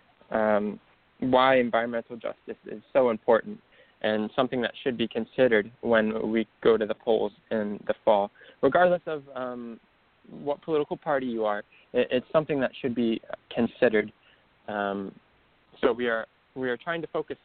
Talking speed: 160 wpm